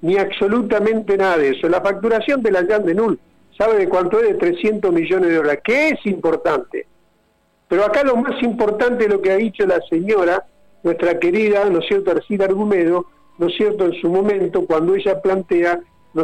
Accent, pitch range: Argentinian, 190-235 Hz